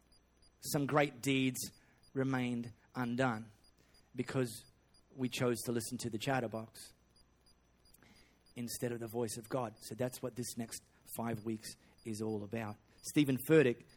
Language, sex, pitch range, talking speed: English, male, 115-165 Hz, 135 wpm